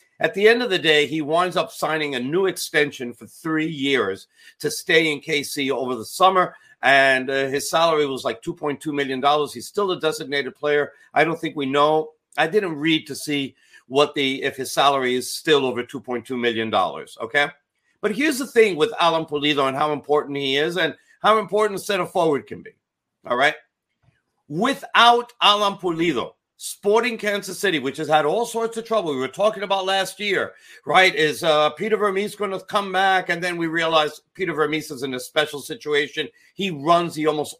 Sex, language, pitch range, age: male, English, 140-190 Hz, 50-69